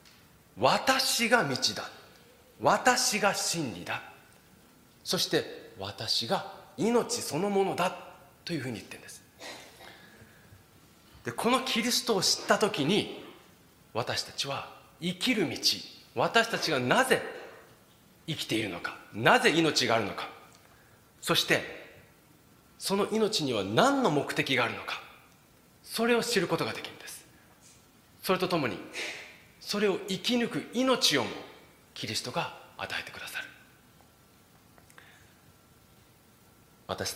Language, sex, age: Japanese, male, 40-59